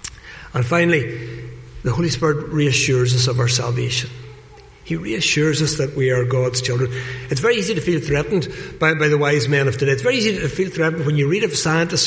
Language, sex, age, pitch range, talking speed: English, male, 60-79, 130-170 Hz, 210 wpm